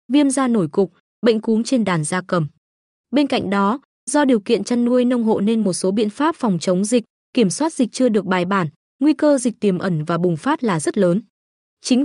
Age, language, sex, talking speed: 20-39, Vietnamese, female, 235 wpm